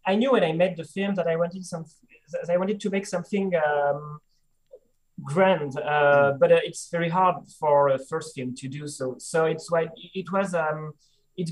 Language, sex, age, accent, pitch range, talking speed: English, male, 30-49, French, 140-180 Hz, 205 wpm